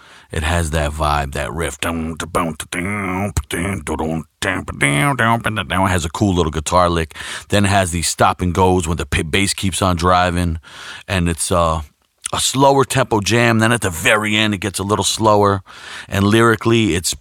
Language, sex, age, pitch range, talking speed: English, male, 40-59, 85-100 Hz, 160 wpm